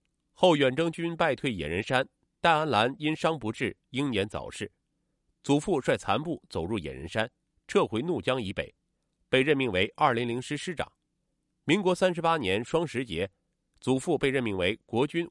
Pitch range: 110-165 Hz